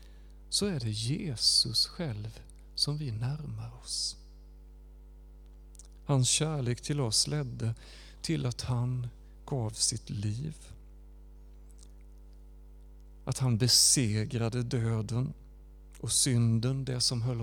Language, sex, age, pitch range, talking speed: Swedish, male, 40-59, 85-140 Hz, 100 wpm